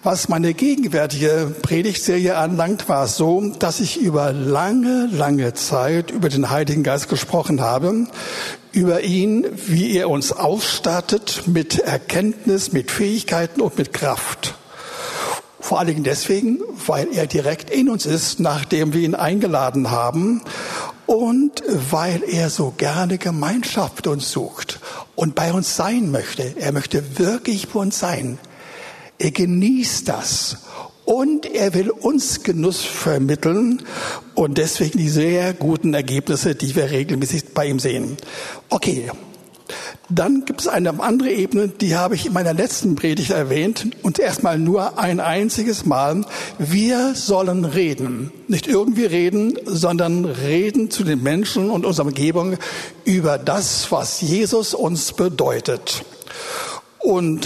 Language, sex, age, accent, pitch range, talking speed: German, male, 60-79, German, 155-210 Hz, 135 wpm